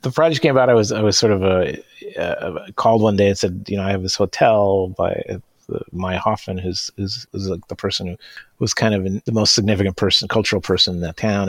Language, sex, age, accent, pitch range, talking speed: English, male, 40-59, American, 85-100 Hz, 240 wpm